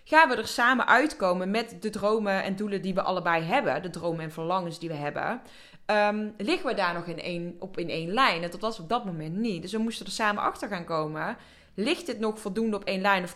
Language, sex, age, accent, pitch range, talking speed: Dutch, female, 20-39, Dutch, 190-255 Hz, 235 wpm